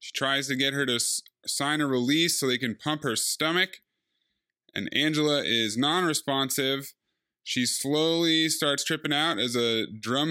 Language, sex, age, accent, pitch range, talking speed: English, male, 20-39, American, 120-150 Hz, 155 wpm